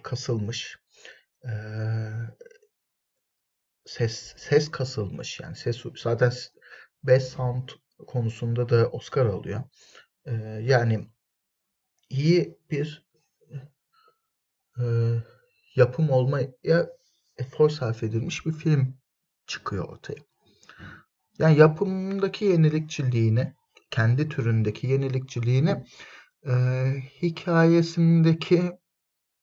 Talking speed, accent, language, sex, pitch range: 65 wpm, native, Turkish, male, 120-160 Hz